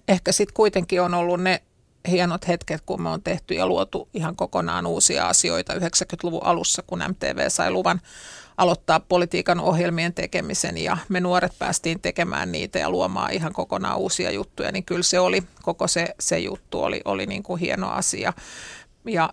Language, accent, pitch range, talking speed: Finnish, native, 175-185 Hz, 170 wpm